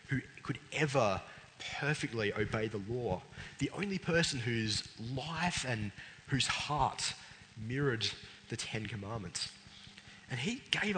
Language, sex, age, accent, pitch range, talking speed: English, male, 20-39, Australian, 105-140 Hz, 120 wpm